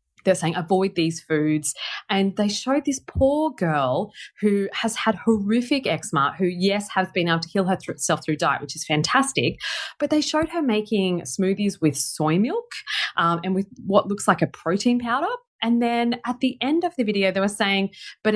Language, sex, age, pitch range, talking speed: English, female, 20-39, 165-215 Hz, 195 wpm